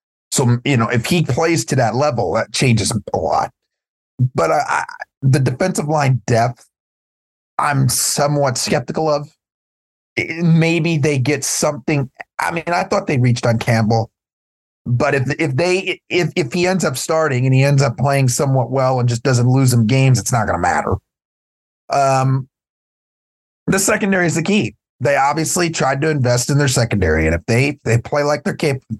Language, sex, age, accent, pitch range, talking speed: English, male, 30-49, American, 115-150 Hz, 180 wpm